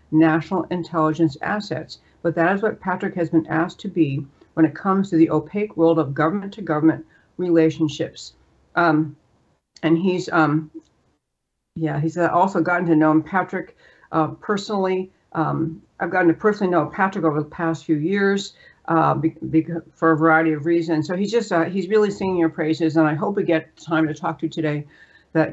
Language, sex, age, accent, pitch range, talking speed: English, female, 60-79, American, 160-180 Hz, 185 wpm